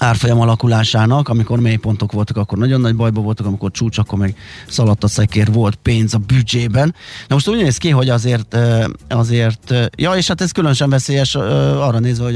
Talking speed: 180 wpm